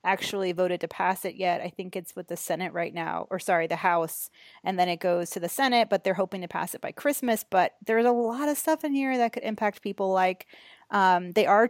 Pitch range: 170-200 Hz